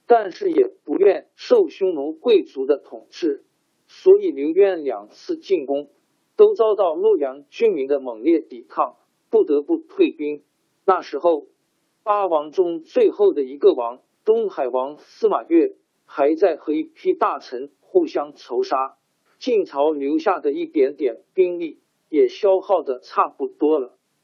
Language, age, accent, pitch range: Chinese, 50-69, native, 305-400 Hz